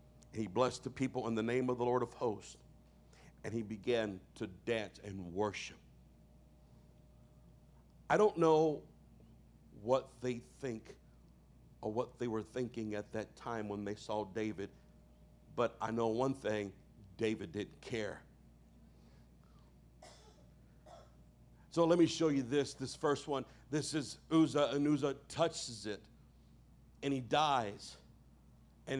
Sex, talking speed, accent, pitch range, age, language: male, 135 wpm, American, 105-150 Hz, 60-79, English